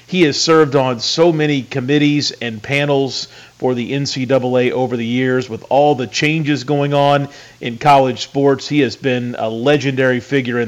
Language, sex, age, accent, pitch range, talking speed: English, male, 40-59, American, 125-145 Hz, 175 wpm